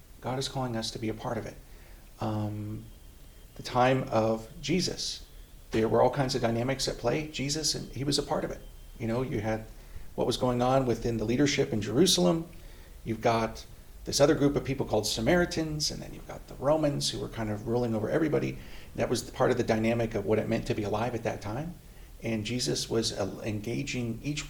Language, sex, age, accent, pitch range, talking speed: English, male, 40-59, American, 105-130 Hz, 215 wpm